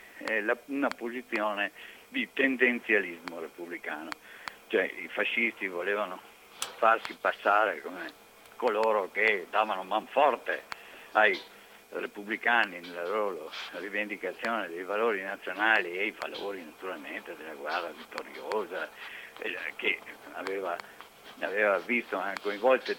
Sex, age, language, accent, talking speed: male, 60-79, Italian, native, 100 wpm